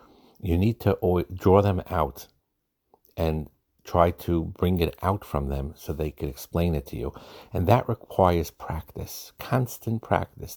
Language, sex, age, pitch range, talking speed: English, male, 60-79, 75-95 Hz, 155 wpm